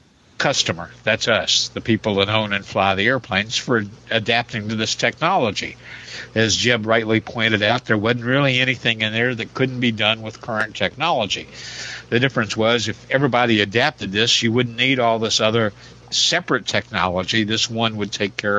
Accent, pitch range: American, 105-120 Hz